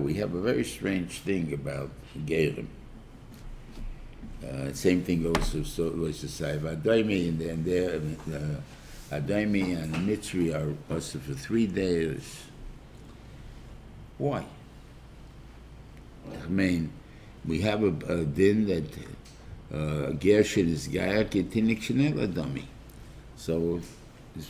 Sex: male